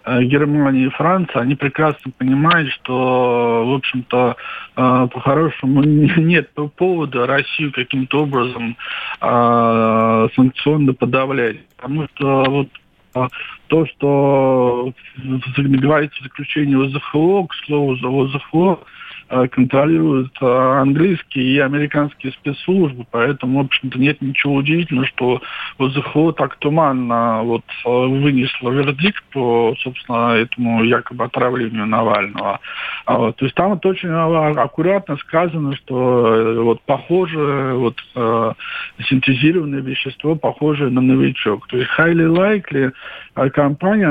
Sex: male